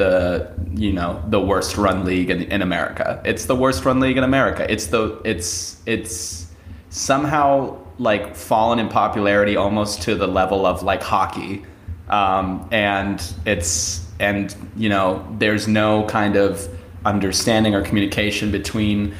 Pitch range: 90-105 Hz